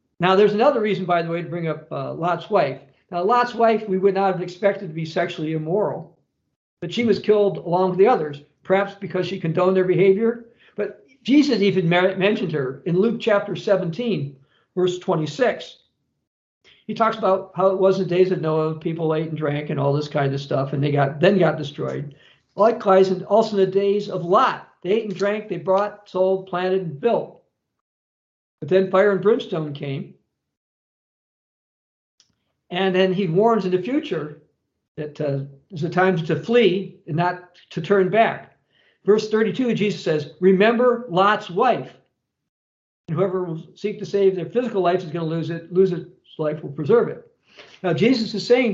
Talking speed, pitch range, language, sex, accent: 185 wpm, 170-210 Hz, English, male, American